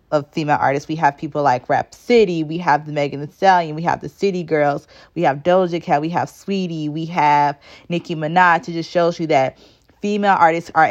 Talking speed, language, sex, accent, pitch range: 215 wpm, English, female, American, 150-185 Hz